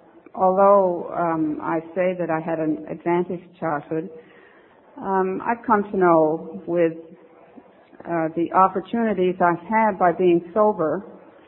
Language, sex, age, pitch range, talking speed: English, female, 60-79, 160-185 Hz, 125 wpm